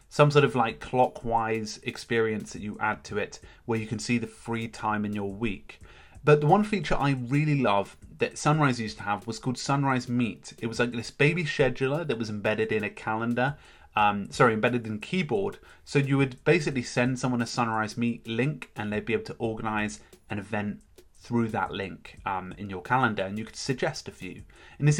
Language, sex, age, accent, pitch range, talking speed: English, male, 30-49, British, 115-140 Hz, 210 wpm